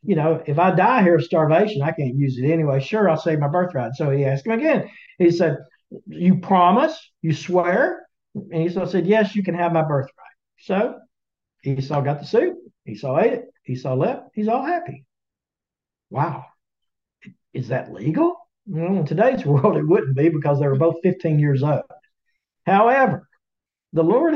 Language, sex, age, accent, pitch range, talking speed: English, male, 60-79, American, 140-195 Hz, 175 wpm